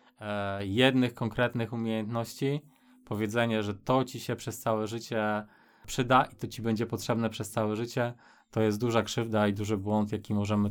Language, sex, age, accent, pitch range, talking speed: Polish, male, 20-39, native, 105-120 Hz, 165 wpm